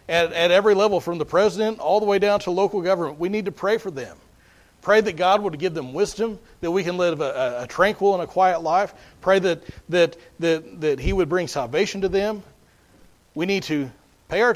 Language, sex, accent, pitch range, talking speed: English, male, American, 145-195 Hz, 225 wpm